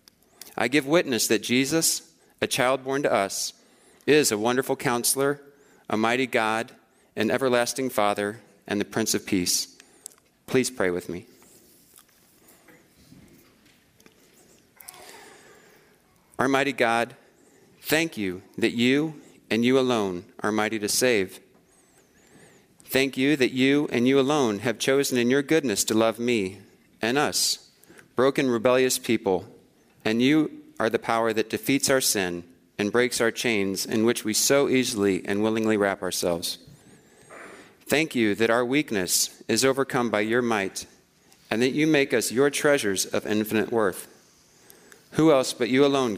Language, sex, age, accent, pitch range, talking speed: English, male, 40-59, American, 105-130 Hz, 145 wpm